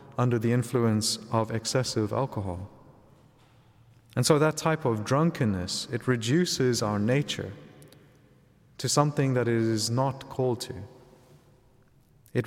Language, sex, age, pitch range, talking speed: English, male, 30-49, 110-140 Hz, 120 wpm